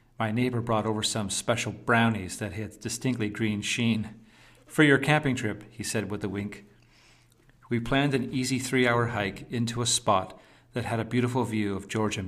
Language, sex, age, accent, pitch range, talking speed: English, male, 40-59, American, 105-125 Hz, 180 wpm